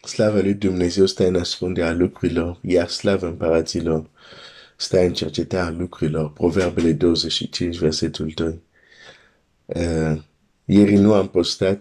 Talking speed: 180 wpm